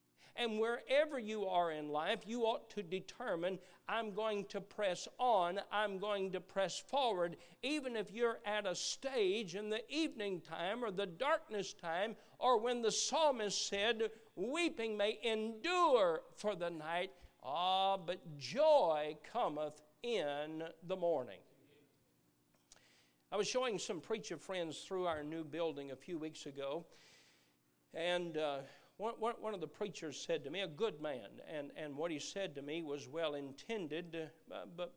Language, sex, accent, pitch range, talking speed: English, male, American, 145-215 Hz, 155 wpm